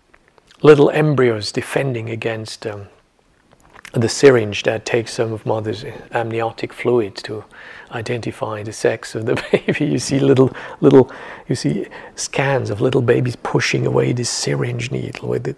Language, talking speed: English, 145 wpm